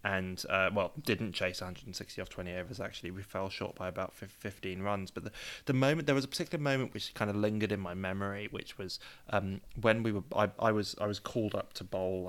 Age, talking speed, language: 20-39, 235 wpm, English